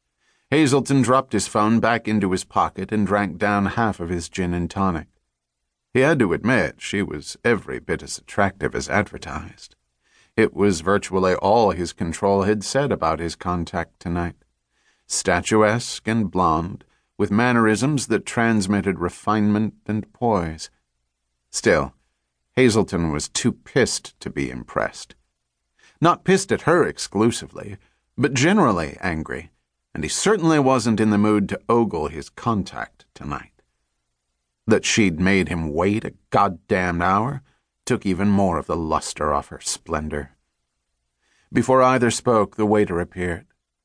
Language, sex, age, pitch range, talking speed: English, male, 40-59, 80-110 Hz, 140 wpm